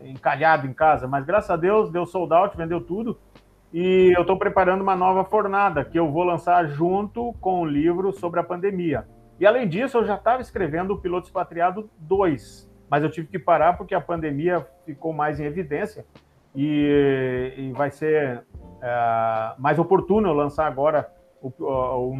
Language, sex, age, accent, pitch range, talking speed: Portuguese, male, 50-69, Brazilian, 140-180 Hz, 175 wpm